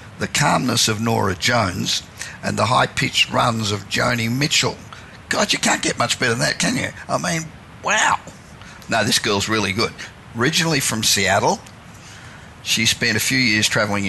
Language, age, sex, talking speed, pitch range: English, 50-69, male, 165 wpm, 100-120 Hz